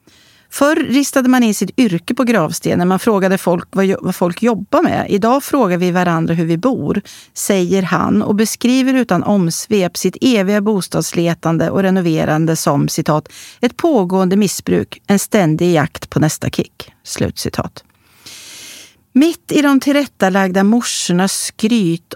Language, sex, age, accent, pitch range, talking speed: Swedish, female, 40-59, native, 165-225 Hz, 145 wpm